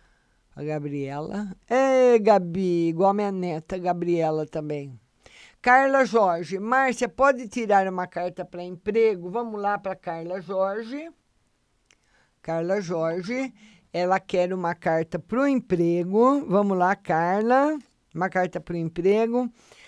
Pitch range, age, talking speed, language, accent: 170-235 Hz, 50-69, 125 wpm, Portuguese, Brazilian